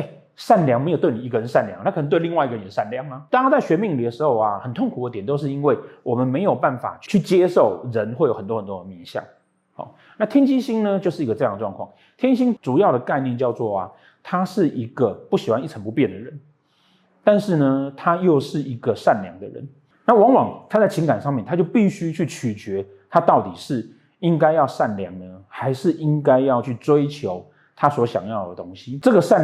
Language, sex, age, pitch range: Chinese, male, 30-49, 115-170 Hz